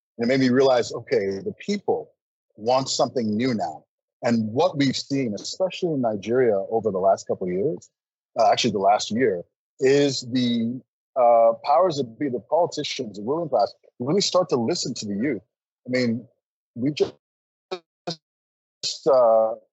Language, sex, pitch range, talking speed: English, male, 115-145 Hz, 160 wpm